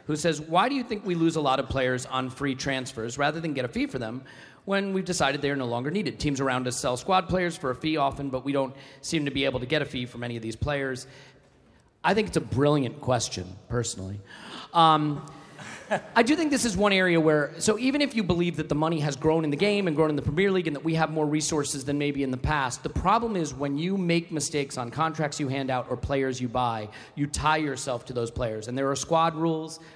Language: English